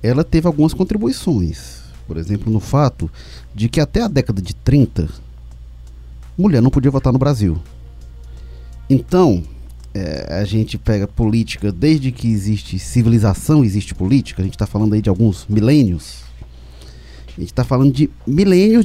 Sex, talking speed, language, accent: male, 145 wpm, Portuguese, Brazilian